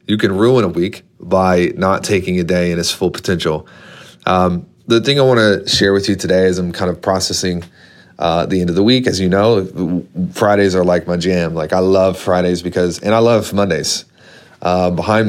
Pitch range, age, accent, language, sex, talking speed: 90-105 Hz, 30-49, American, English, male, 210 wpm